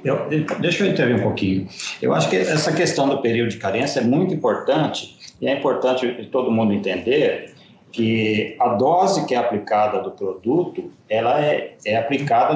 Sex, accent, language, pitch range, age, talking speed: male, Brazilian, Portuguese, 125-190 Hz, 50-69, 170 wpm